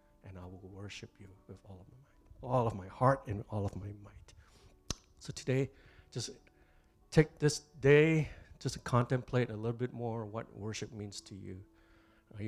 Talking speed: 185 wpm